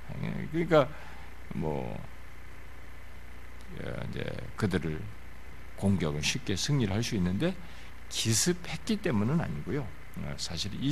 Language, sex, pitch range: Korean, male, 85-140 Hz